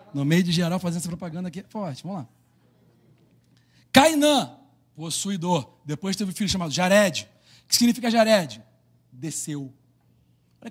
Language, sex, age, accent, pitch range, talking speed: Portuguese, male, 40-59, Brazilian, 155-195 Hz, 140 wpm